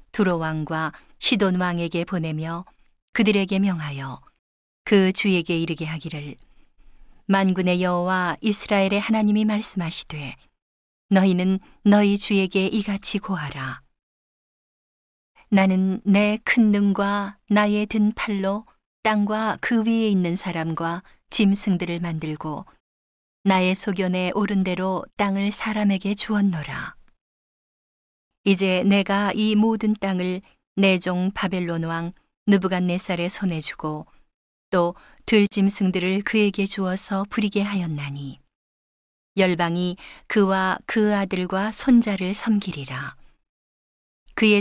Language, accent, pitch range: Korean, native, 170-205 Hz